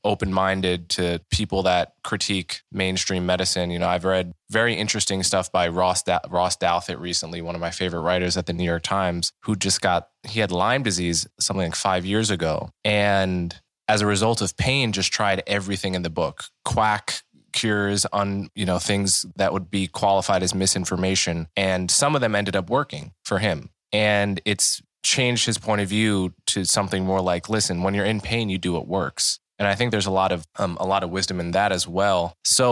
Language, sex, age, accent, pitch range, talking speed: English, male, 20-39, American, 90-105 Hz, 205 wpm